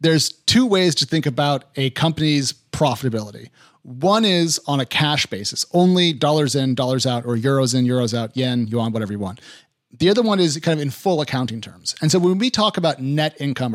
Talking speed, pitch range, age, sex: 210 wpm, 135-165 Hz, 40-59, male